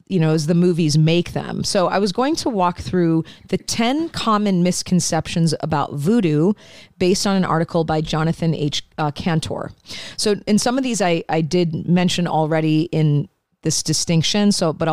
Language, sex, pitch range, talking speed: English, female, 155-185 Hz, 175 wpm